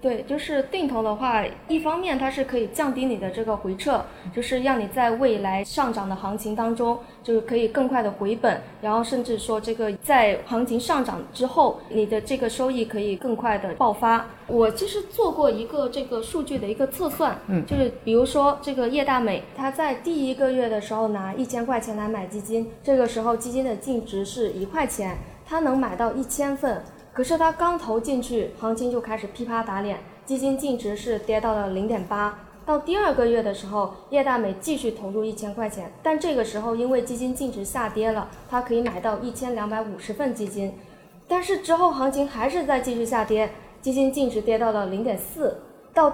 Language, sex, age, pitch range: Chinese, female, 20-39, 210-265 Hz